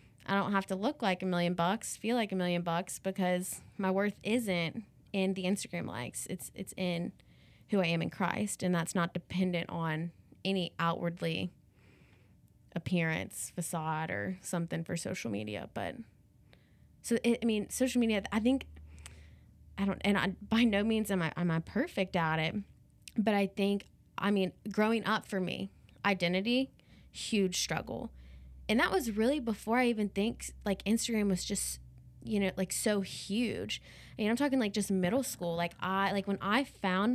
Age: 20-39